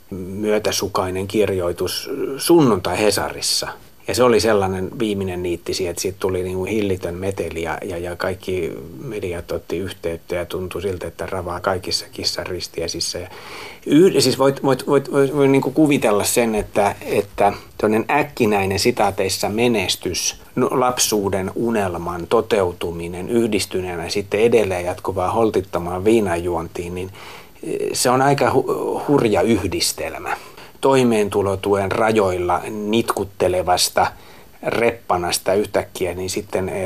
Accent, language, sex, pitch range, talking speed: native, Finnish, male, 90-115 Hz, 105 wpm